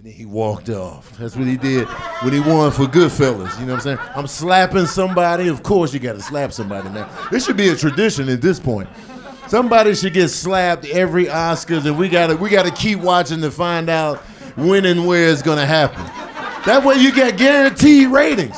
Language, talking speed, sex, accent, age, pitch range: English, 205 wpm, male, American, 50-69, 155-230 Hz